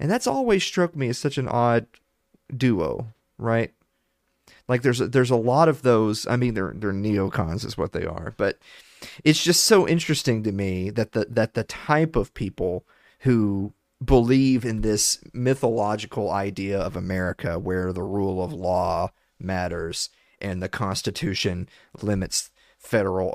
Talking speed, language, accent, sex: 155 wpm, English, American, male